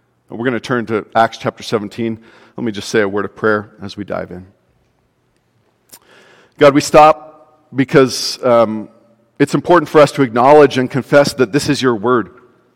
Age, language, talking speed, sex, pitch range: 40-59, English, 180 wpm, male, 115-150 Hz